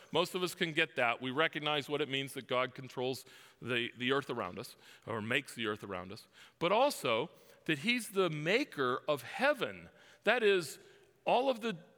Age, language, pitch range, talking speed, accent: 40-59, English, 140-215 Hz, 190 wpm, American